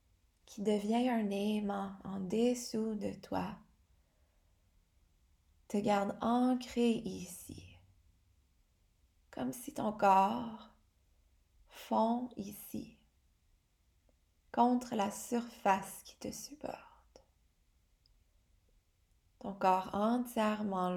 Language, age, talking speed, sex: English, 20-39, 75 wpm, female